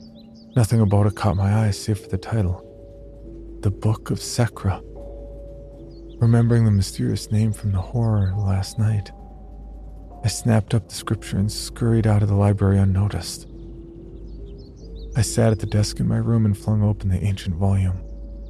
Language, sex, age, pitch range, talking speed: English, male, 40-59, 90-110 Hz, 160 wpm